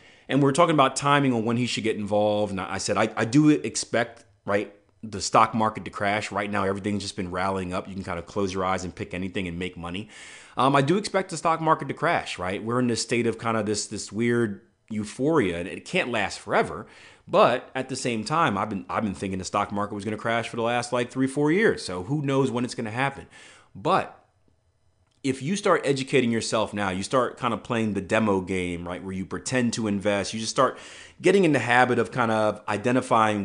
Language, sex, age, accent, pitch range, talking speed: English, male, 30-49, American, 100-130 Hz, 240 wpm